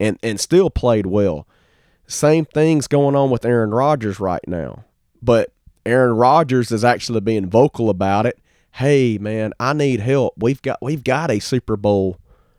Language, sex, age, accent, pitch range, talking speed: English, male, 30-49, American, 100-130 Hz, 165 wpm